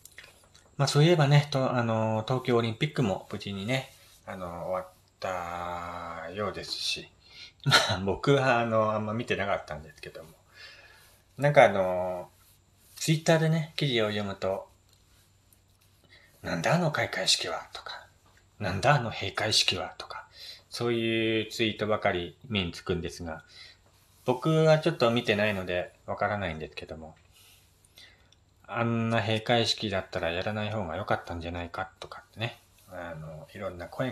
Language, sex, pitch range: Japanese, male, 90-125 Hz